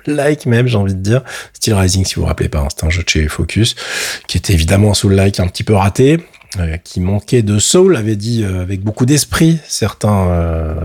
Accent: French